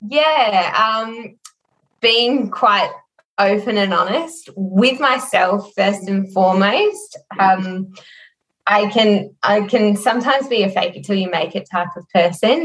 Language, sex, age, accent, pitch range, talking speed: English, female, 10-29, Australian, 185-230 Hz, 140 wpm